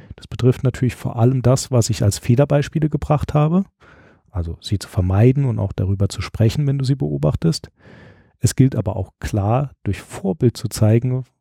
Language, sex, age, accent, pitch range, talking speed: German, male, 40-59, German, 100-130 Hz, 180 wpm